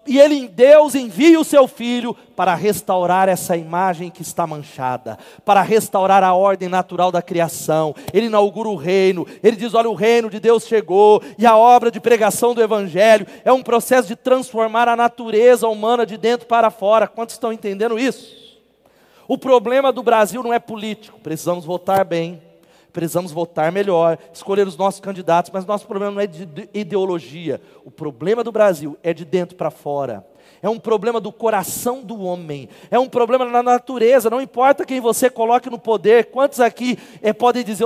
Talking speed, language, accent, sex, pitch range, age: 180 wpm, Portuguese, Brazilian, male, 185-240 Hz, 40-59